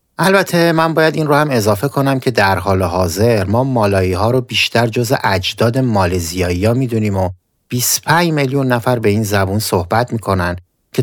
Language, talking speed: Persian, 175 wpm